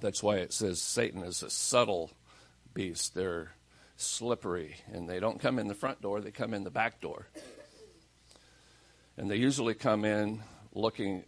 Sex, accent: male, American